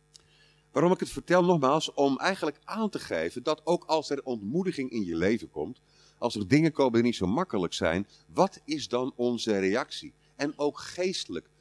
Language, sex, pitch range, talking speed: Dutch, male, 115-155 Hz, 185 wpm